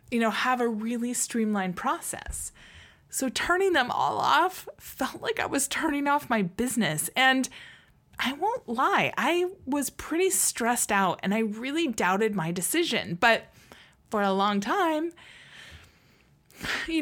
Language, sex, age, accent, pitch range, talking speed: English, female, 20-39, American, 190-240 Hz, 145 wpm